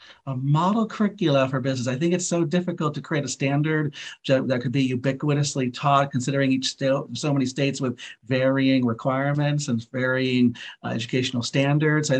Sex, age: male, 40-59